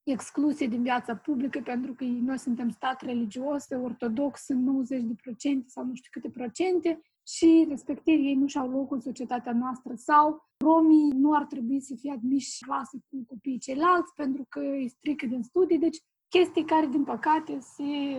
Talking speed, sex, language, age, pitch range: 180 wpm, female, Romanian, 20-39, 260-315 Hz